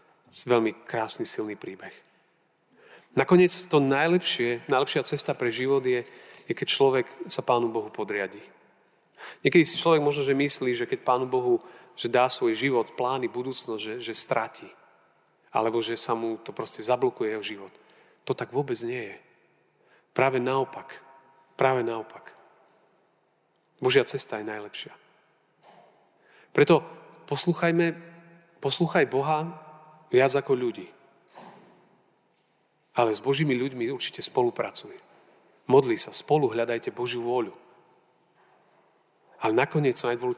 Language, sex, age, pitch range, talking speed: Slovak, male, 40-59, 120-185 Hz, 120 wpm